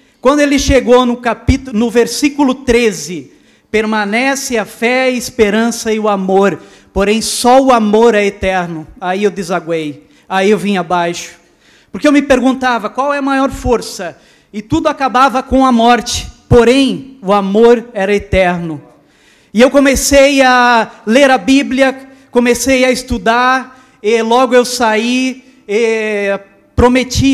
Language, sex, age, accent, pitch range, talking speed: Portuguese, male, 20-39, Brazilian, 210-260 Hz, 145 wpm